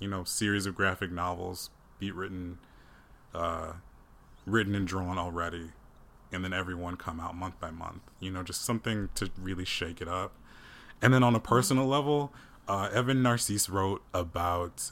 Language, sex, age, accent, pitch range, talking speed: English, male, 20-39, American, 90-115 Hz, 170 wpm